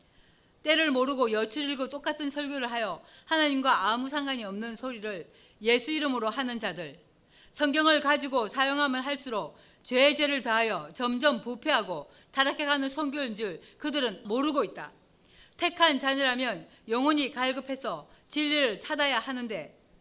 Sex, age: female, 40-59